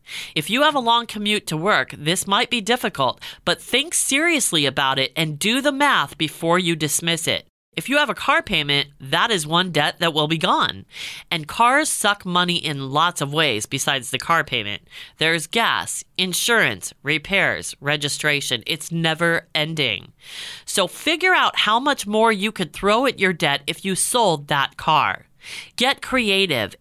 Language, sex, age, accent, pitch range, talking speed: English, female, 30-49, American, 155-230 Hz, 175 wpm